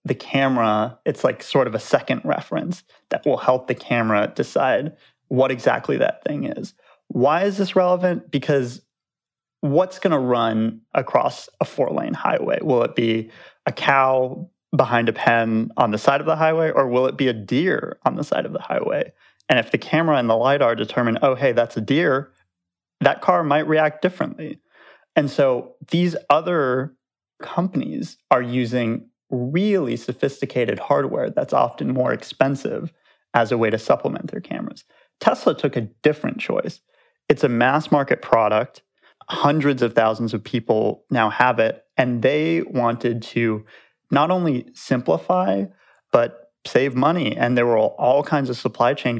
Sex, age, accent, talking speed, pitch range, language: male, 30-49, American, 165 wpm, 115-145 Hz, English